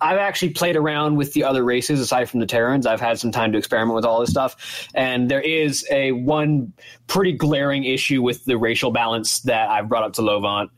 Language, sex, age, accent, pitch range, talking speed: English, male, 20-39, American, 120-150 Hz, 225 wpm